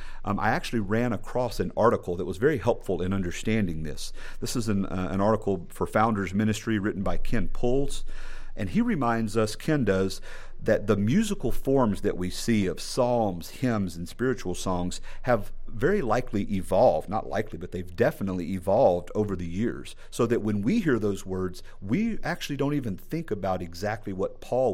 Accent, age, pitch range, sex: American, 50-69, 95-115 Hz, male